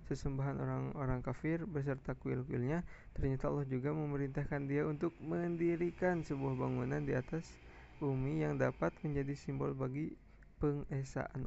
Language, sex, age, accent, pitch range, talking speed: Indonesian, male, 20-39, native, 125-150 Hz, 120 wpm